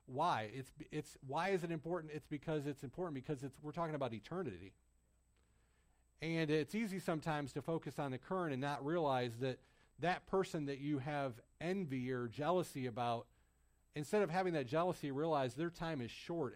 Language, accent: English, American